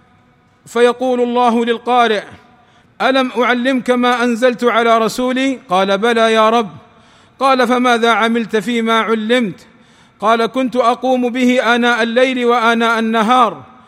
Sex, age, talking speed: male, 40-59, 110 wpm